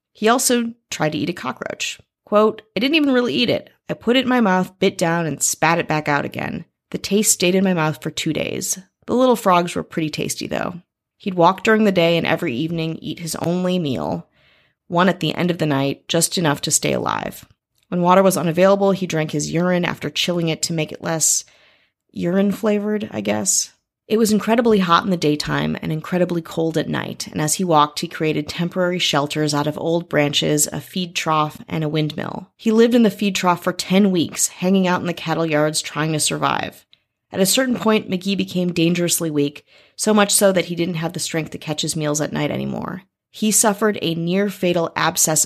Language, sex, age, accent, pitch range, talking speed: English, female, 30-49, American, 155-195 Hz, 215 wpm